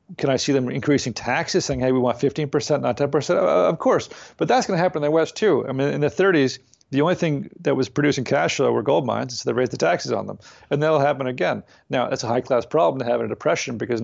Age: 40-59